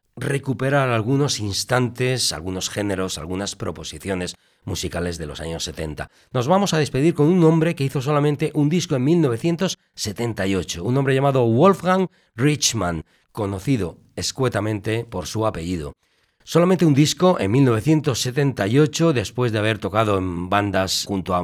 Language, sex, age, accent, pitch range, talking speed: Spanish, male, 40-59, Spanish, 90-140 Hz, 135 wpm